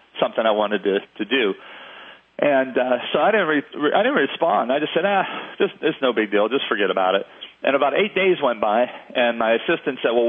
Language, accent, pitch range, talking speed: English, American, 115-135 Hz, 240 wpm